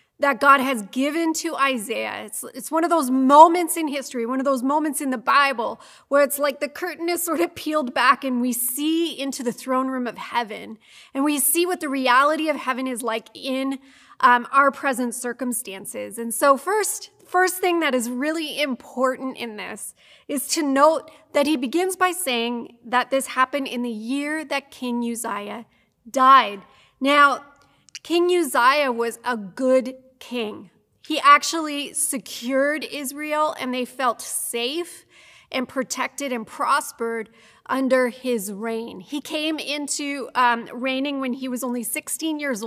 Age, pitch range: 20-39, 245-295 Hz